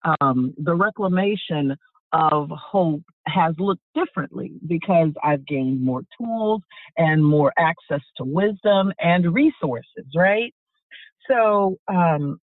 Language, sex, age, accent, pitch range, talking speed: English, female, 50-69, American, 160-205 Hz, 110 wpm